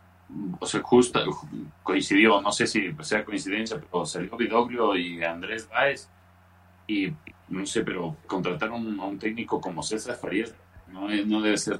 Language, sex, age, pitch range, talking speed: Spanish, male, 30-49, 90-110 Hz, 165 wpm